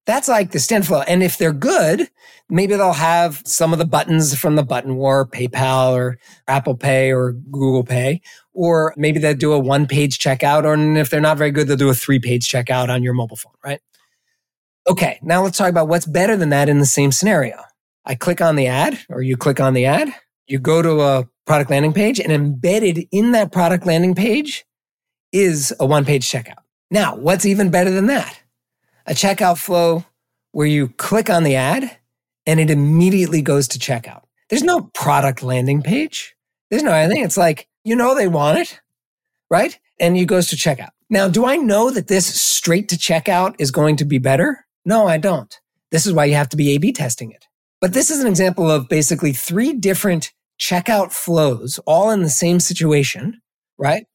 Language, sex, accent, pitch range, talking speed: English, male, American, 140-190 Hz, 195 wpm